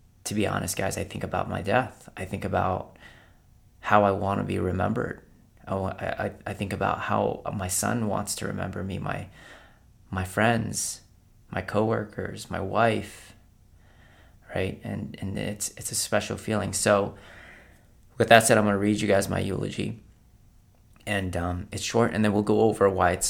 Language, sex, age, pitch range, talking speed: English, male, 30-49, 90-105 Hz, 170 wpm